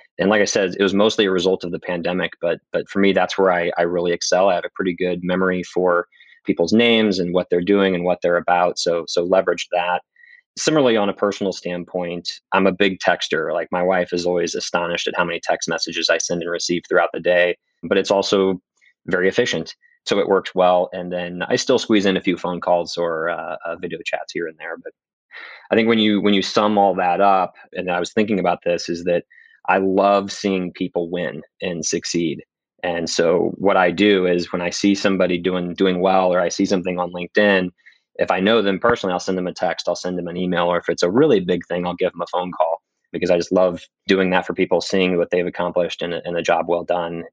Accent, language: American, English